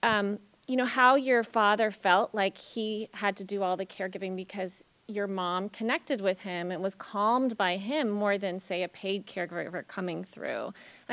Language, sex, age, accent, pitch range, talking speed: English, female, 30-49, American, 195-235 Hz, 190 wpm